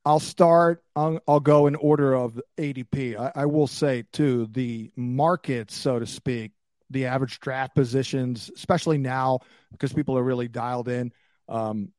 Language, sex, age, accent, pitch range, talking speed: English, male, 50-69, American, 125-160 Hz, 160 wpm